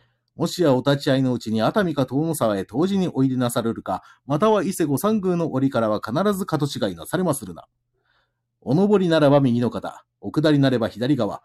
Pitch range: 120-170 Hz